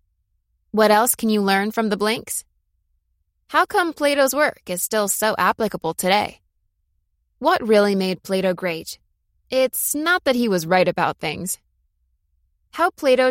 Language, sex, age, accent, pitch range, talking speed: English, female, 20-39, American, 170-235 Hz, 145 wpm